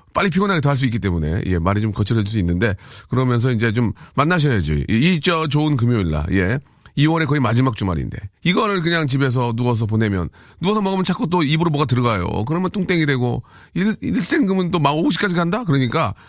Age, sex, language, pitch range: 40-59, male, Korean, 100-150 Hz